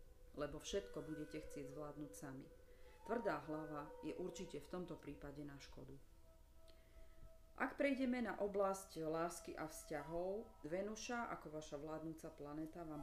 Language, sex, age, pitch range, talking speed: Slovak, female, 40-59, 150-180 Hz, 130 wpm